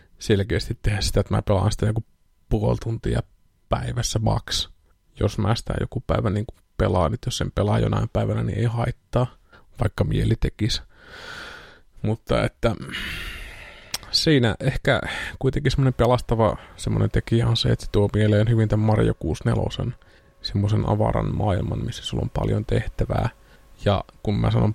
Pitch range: 100-115 Hz